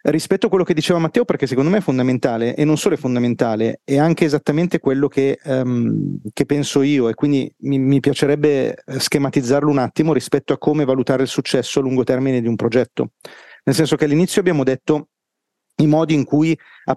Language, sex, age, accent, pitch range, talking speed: Italian, male, 40-59, native, 125-155 Hz, 195 wpm